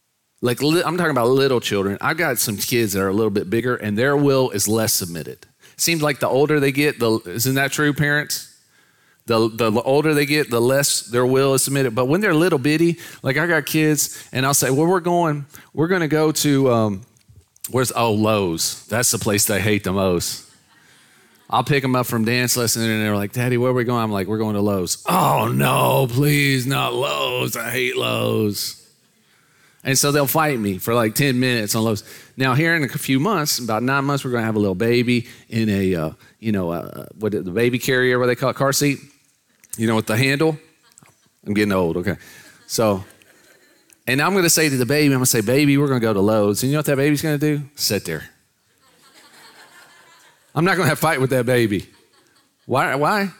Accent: American